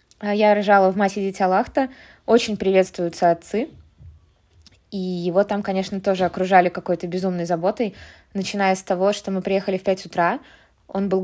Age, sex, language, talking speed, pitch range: 20-39, female, Russian, 155 wpm, 195-225 Hz